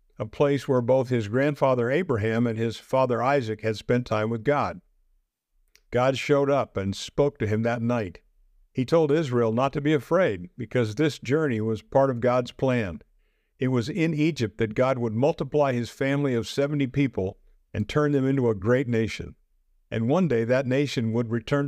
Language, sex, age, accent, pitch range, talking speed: English, male, 50-69, American, 110-140 Hz, 185 wpm